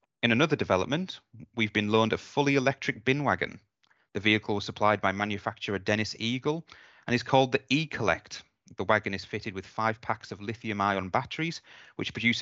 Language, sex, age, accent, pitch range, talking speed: English, male, 30-49, British, 100-125 Hz, 180 wpm